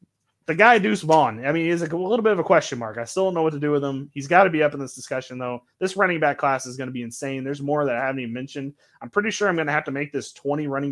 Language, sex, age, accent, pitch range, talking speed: English, male, 20-39, American, 130-165 Hz, 330 wpm